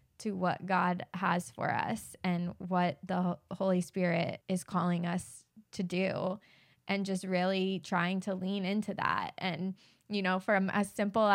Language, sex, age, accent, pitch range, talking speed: English, female, 20-39, American, 185-215 Hz, 160 wpm